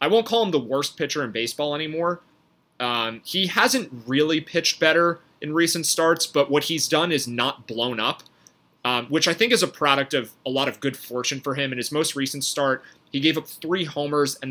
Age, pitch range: 30-49, 120-155 Hz